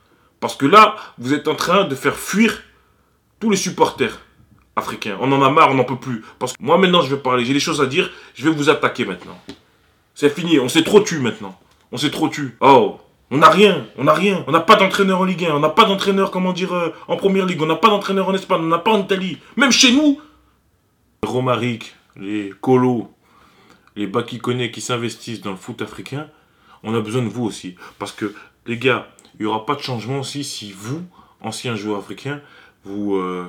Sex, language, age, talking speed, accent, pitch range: male, French, 20-39, 220 wpm, French, 105-155 Hz